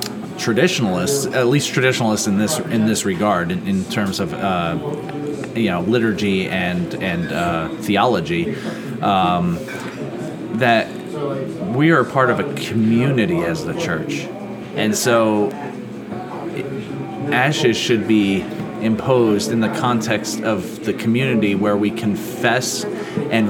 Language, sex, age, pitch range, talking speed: English, male, 30-49, 105-120 Hz, 125 wpm